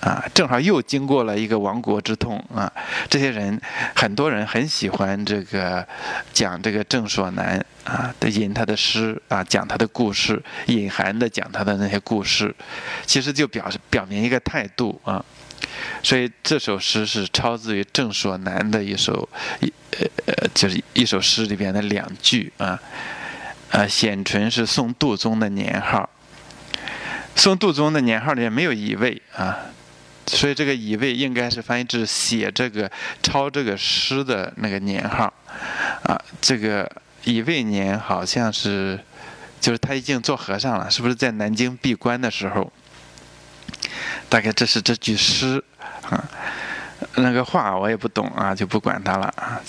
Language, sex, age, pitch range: Chinese, male, 20-39, 100-125 Hz